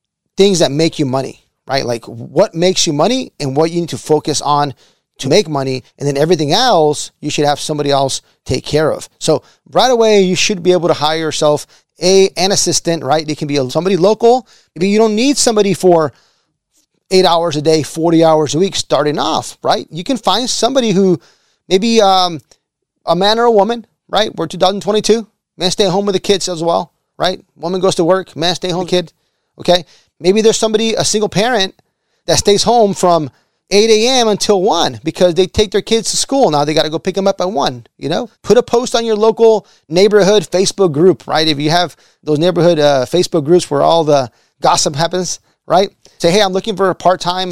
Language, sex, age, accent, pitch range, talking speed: English, male, 30-49, American, 155-195 Hz, 210 wpm